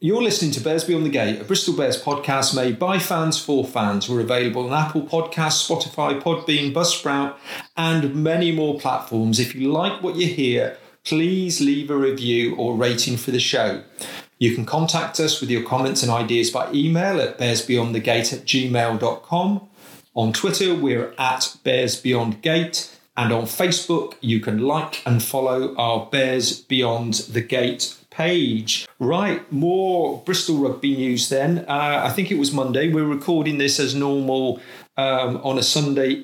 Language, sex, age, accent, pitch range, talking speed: English, male, 40-59, British, 125-160 Hz, 165 wpm